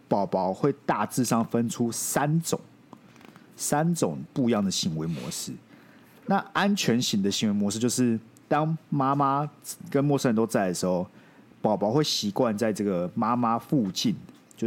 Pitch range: 110-160 Hz